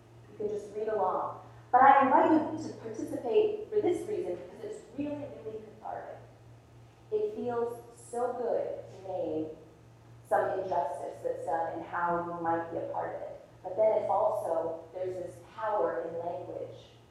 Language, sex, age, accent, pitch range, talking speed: English, female, 20-39, American, 165-270 Hz, 165 wpm